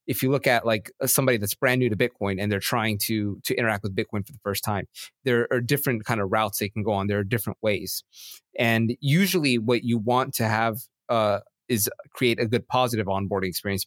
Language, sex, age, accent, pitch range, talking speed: English, male, 30-49, American, 105-130 Hz, 225 wpm